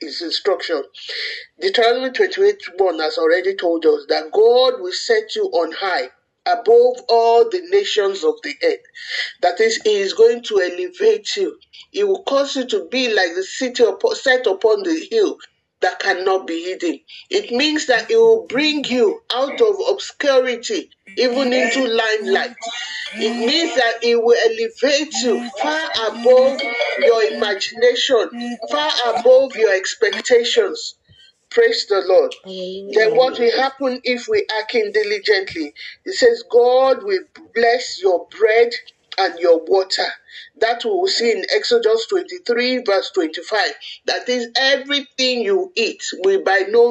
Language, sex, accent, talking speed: English, male, Nigerian, 145 wpm